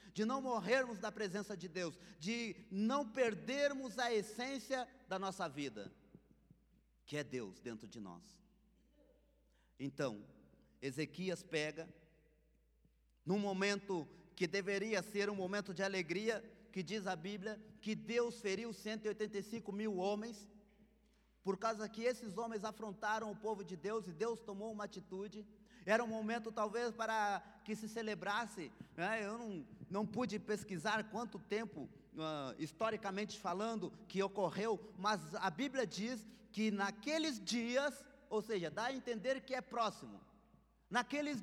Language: Portuguese